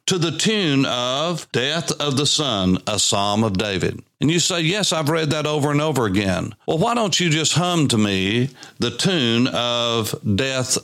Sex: male